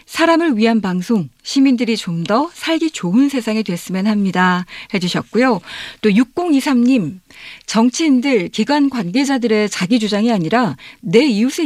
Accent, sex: native, female